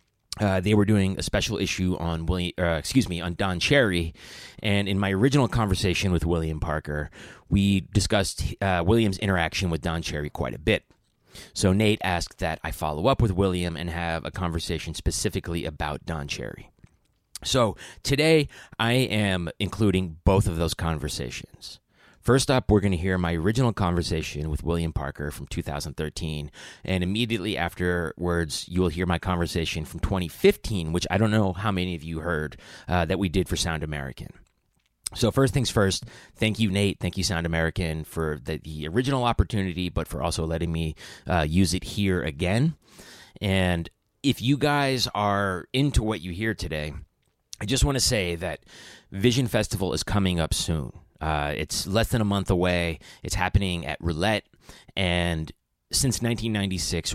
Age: 30-49